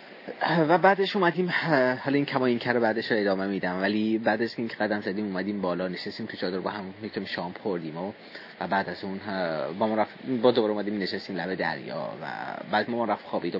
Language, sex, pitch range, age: Persian, male, 95-115 Hz, 30-49